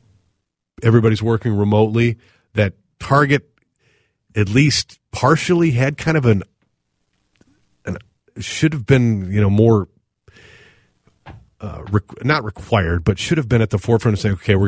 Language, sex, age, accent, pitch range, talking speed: English, male, 40-59, American, 105-140 Hz, 130 wpm